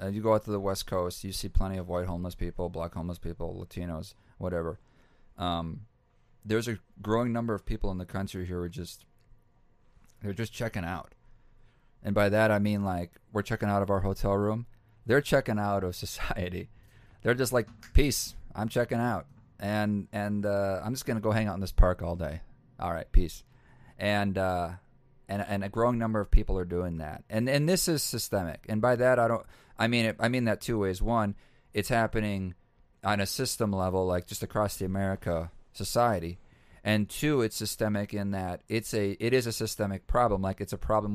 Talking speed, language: 200 wpm, English